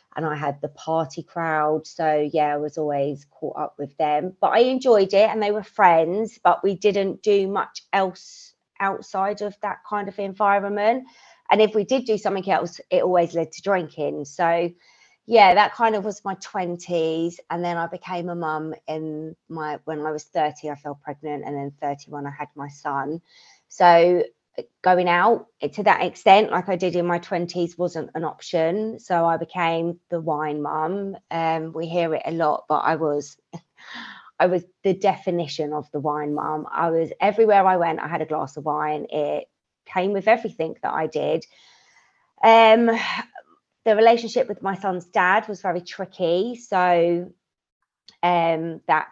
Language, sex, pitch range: English, female, 155-195 Hz